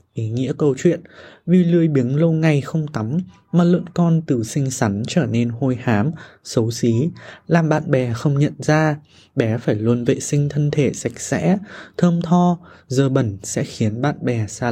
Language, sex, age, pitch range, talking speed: Vietnamese, male, 20-39, 125-170 Hz, 190 wpm